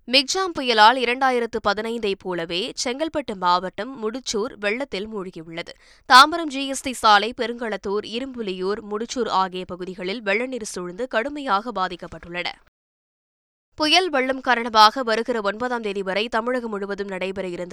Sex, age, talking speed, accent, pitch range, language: female, 20-39, 105 wpm, native, 195-240 Hz, Tamil